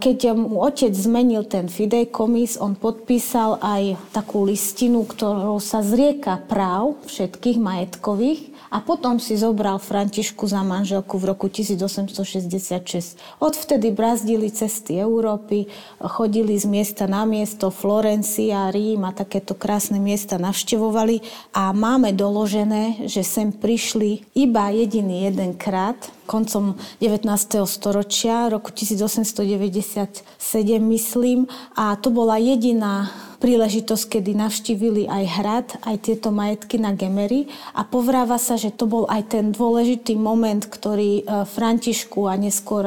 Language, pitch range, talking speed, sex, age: Slovak, 200-225 Hz, 120 wpm, female, 30-49